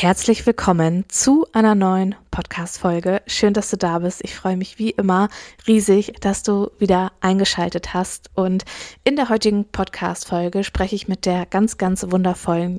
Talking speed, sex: 160 wpm, female